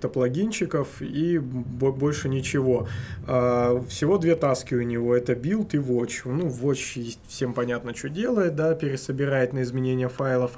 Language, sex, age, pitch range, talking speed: Russian, male, 20-39, 125-145 Hz, 135 wpm